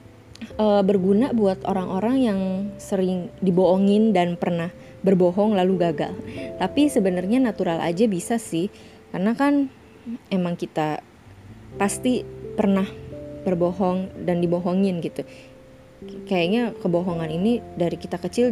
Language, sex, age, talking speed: Indonesian, female, 20-39, 110 wpm